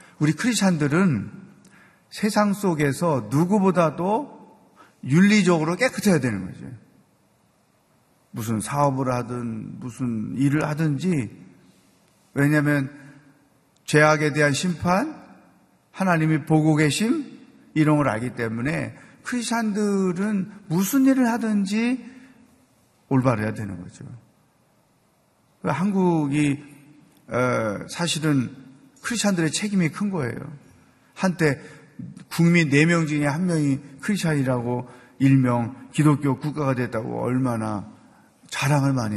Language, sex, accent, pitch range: Korean, male, native, 130-180 Hz